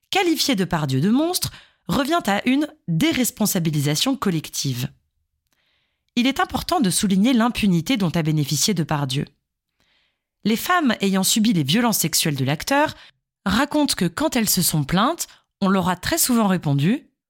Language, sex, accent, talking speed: French, female, French, 155 wpm